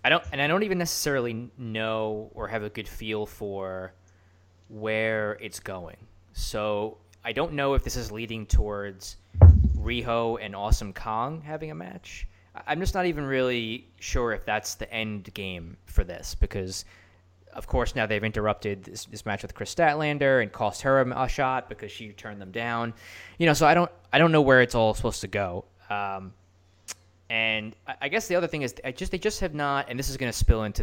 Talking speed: 200 wpm